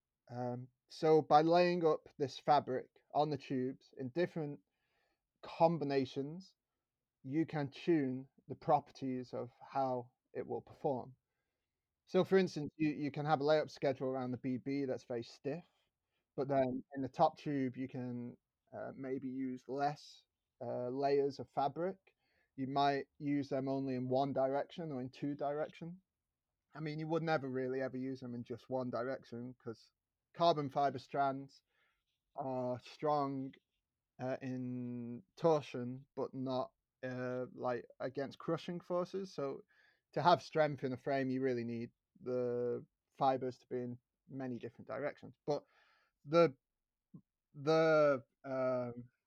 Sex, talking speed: male, 145 wpm